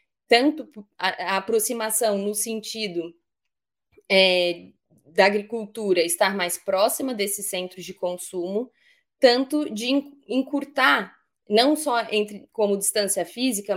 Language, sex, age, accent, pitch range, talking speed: Portuguese, female, 20-39, Brazilian, 200-245 Hz, 95 wpm